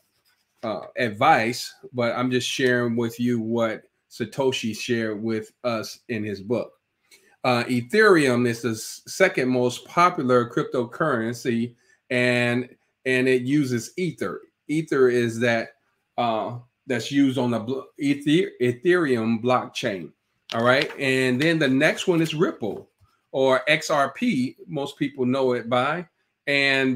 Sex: male